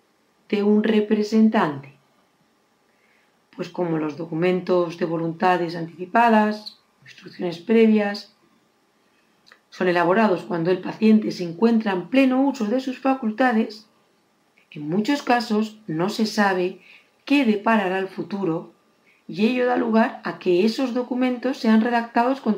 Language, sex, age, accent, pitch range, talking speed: Spanish, female, 40-59, Spanish, 180-230 Hz, 120 wpm